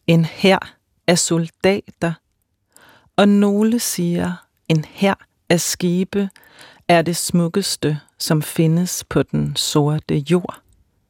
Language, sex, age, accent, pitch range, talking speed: Danish, female, 40-59, native, 135-180 Hz, 110 wpm